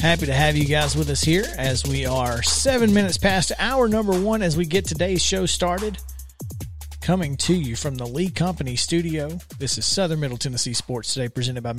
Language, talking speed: English, 205 wpm